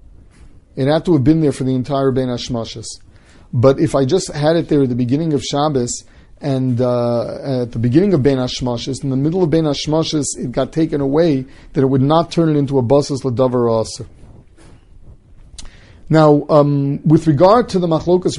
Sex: male